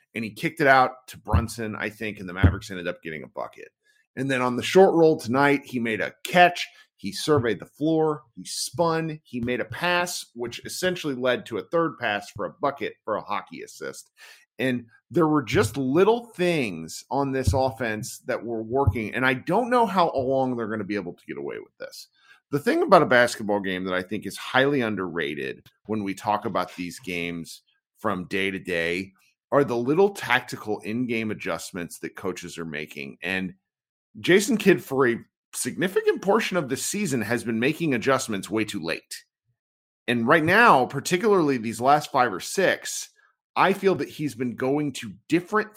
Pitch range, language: 110-175 Hz, English